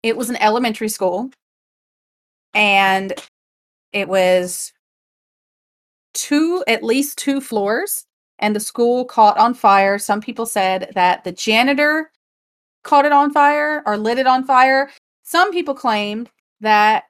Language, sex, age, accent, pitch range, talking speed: English, female, 30-49, American, 195-250 Hz, 135 wpm